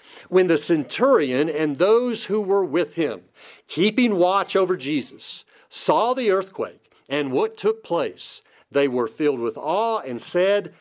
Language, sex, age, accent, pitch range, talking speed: English, male, 50-69, American, 160-220 Hz, 150 wpm